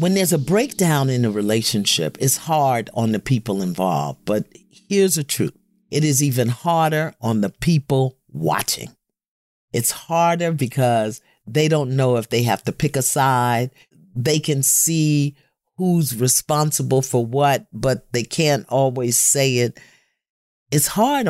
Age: 50-69